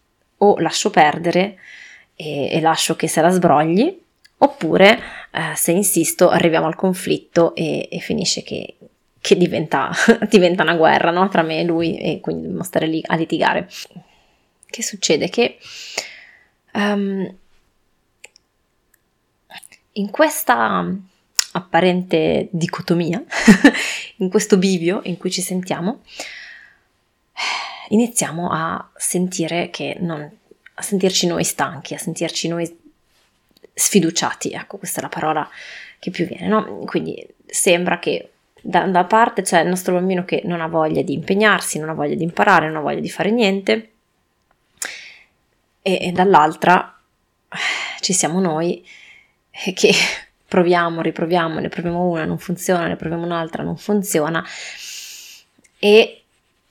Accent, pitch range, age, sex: native, 165-200 Hz, 20-39, female